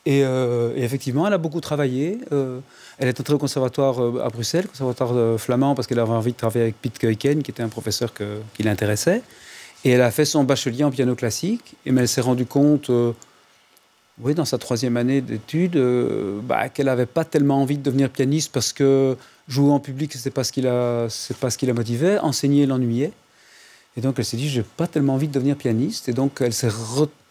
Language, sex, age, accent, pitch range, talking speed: French, male, 40-59, French, 120-140 Hz, 220 wpm